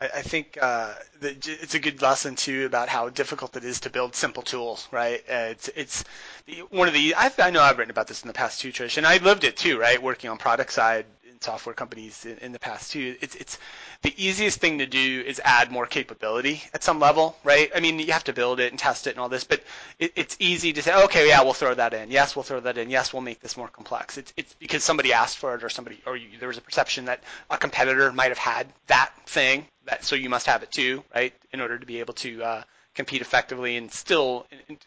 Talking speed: 255 wpm